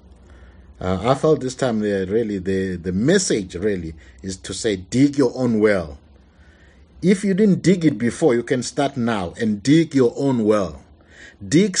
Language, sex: English, male